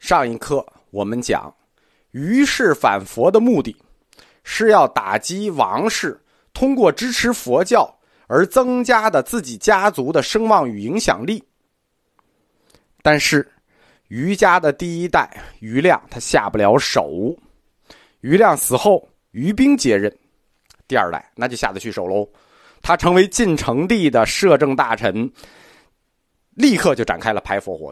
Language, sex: Chinese, male